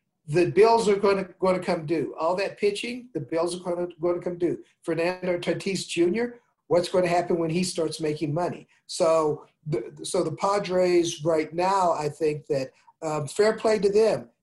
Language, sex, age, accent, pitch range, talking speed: English, male, 50-69, American, 160-195 Hz, 200 wpm